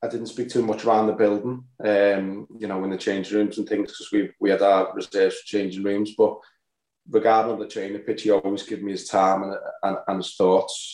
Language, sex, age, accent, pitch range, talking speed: English, male, 20-39, British, 95-110 Hz, 235 wpm